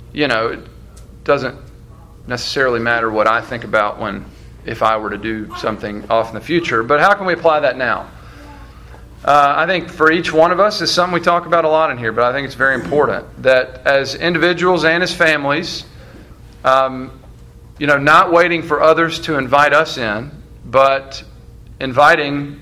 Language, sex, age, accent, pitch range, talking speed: English, male, 40-59, American, 125-155 Hz, 185 wpm